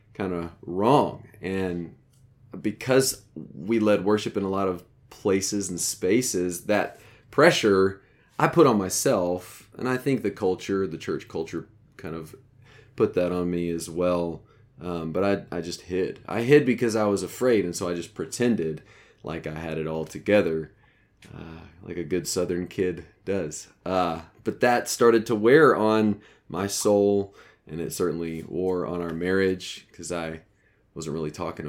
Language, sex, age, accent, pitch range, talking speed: English, male, 30-49, American, 85-105 Hz, 165 wpm